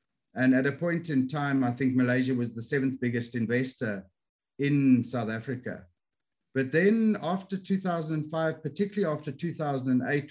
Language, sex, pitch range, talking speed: English, male, 120-145 Hz, 140 wpm